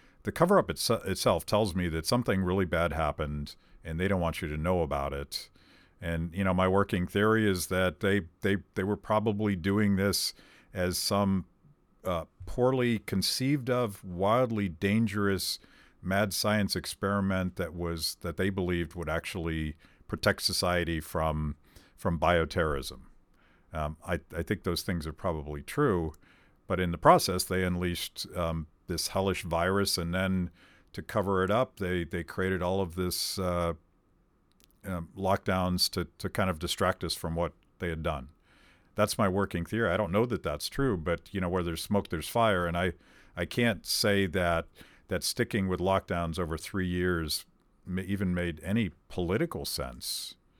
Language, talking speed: English, 165 wpm